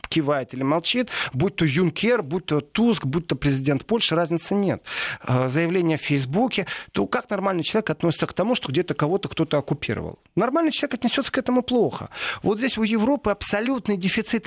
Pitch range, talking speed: 140-200 Hz, 175 wpm